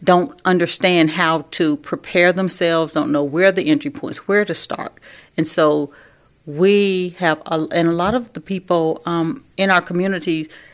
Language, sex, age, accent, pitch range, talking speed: English, female, 40-59, American, 160-195 Hz, 170 wpm